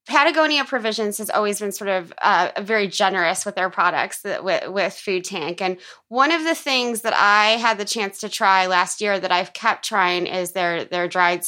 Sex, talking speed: female, 210 wpm